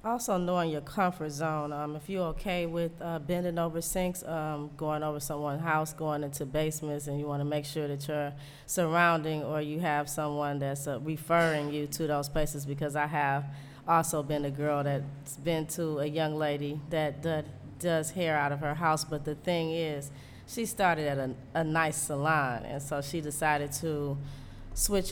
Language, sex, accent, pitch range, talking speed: English, female, American, 145-165 Hz, 190 wpm